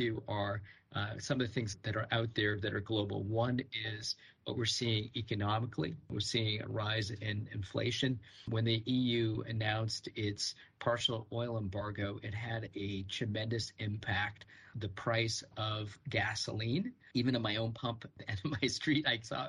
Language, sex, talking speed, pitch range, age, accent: English, male, 170 wpm, 105-125 Hz, 40-59, American